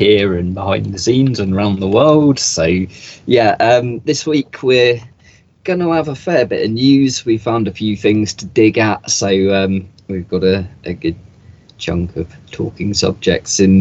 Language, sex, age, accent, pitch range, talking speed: English, male, 20-39, British, 95-125 Hz, 185 wpm